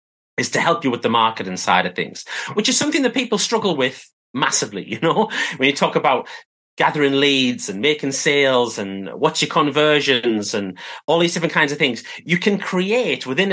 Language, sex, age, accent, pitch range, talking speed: English, male, 30-49, British, 120-175 Hz, 195 wpm